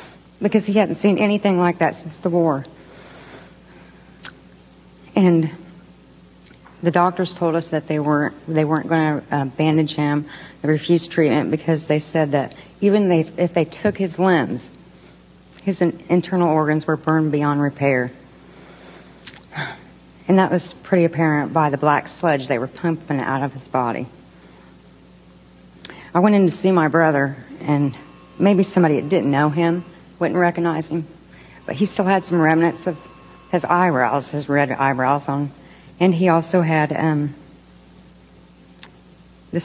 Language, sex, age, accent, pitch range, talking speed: English, female, 40-59, American, 145-175 Hz, 150 wpm